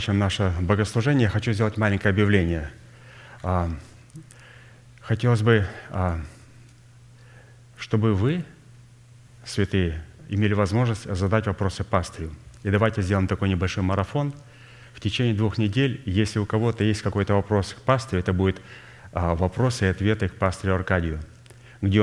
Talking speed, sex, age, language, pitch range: 125 wpm, male, 30-49, Russian, 95-115 Hz